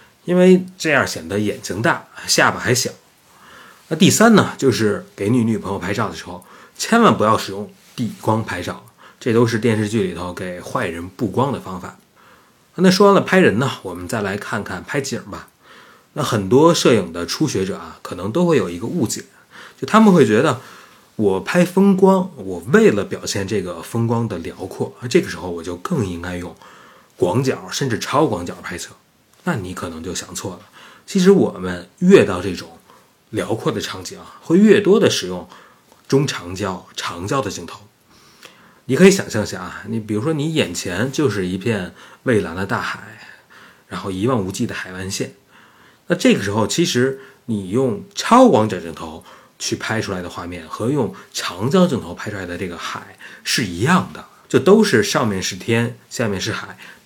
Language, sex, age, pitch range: Chinese, male, 30-49, 90-135 Hz